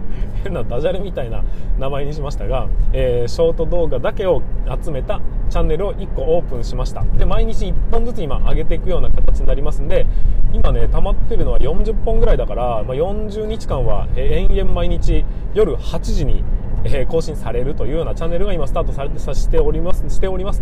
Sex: male